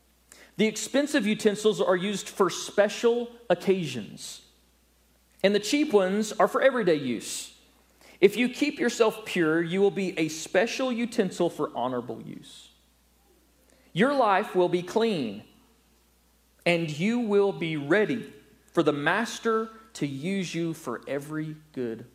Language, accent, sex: English, American, male